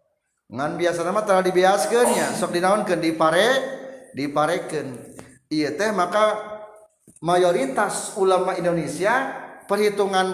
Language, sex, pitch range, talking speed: Indonesian, male, 140-200 Hz, 95 wpm